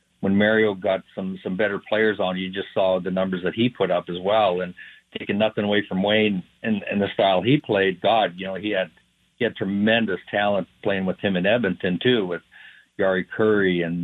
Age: 50-69